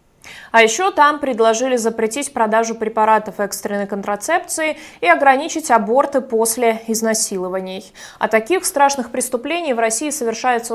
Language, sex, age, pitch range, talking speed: Russian, female, 20-39, 215-265 Hz, 115 wpm